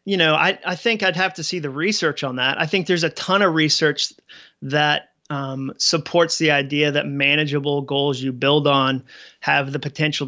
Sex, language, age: male, English, 30-49